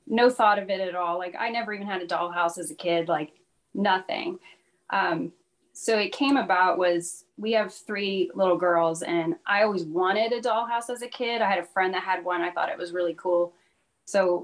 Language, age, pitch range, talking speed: English, 30-49, 180-230 Hz, 215 wpm